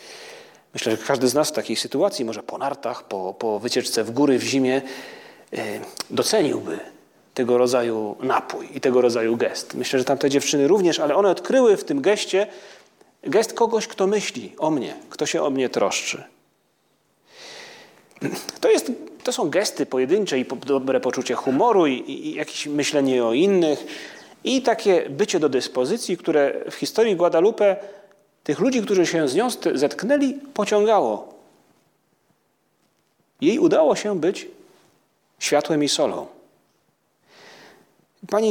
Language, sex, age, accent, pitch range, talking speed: Polish, male, 30-49, native, 140-230 Hz, 140 wpm